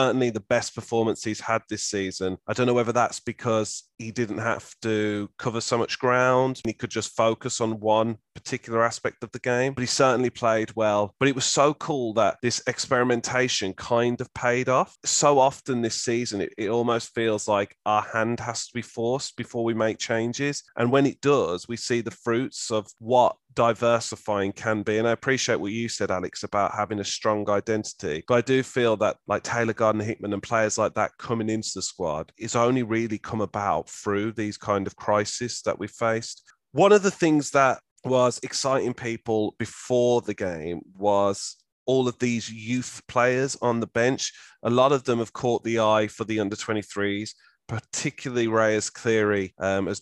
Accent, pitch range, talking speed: British, 110-125 Hz, 195 wpm